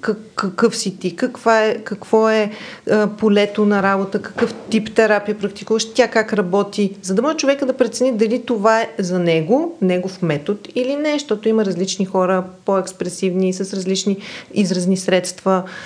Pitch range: 185-225 Hz